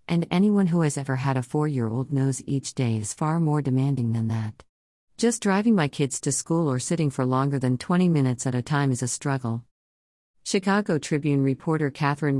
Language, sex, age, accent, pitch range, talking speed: English, female, 50-69, American, 130-155 Hz, 195 wpm